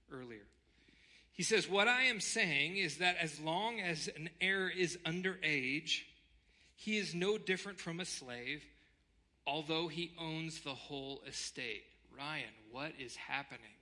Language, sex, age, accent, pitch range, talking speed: English, male, 40-59, American, 105-170 Hz, 145 wpm